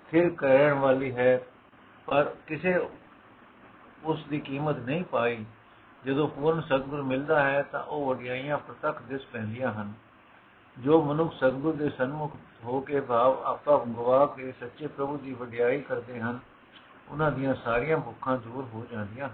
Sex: male